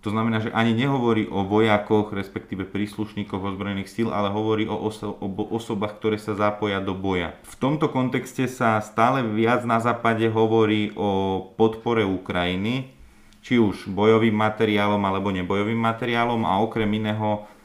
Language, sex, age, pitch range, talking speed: Slovak, male, 30-49, 100-115 Hz, 150 wpm